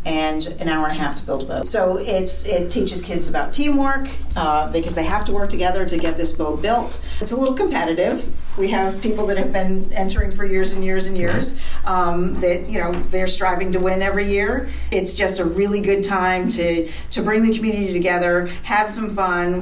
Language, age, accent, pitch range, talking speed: English, 40-59, American, 175-215 Hz, 215 wpm